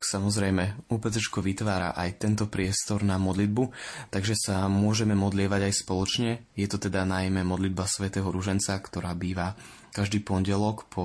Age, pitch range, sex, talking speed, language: 20-39, 90-105 Hz, male, 140 wpm, Slovak